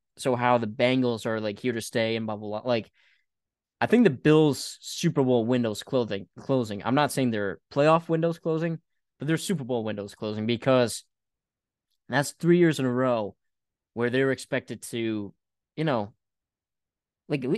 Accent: American